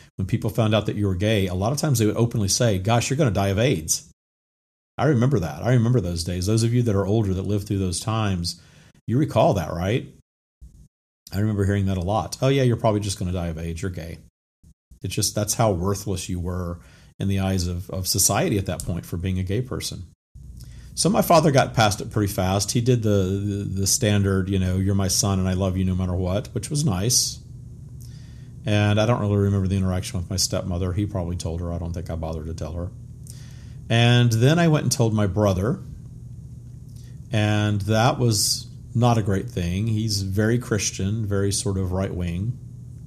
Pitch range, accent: 95-120 Hz, American